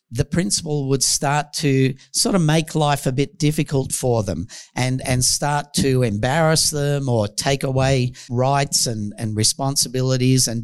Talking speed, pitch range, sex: 160 wpm, 125-155 Hz, male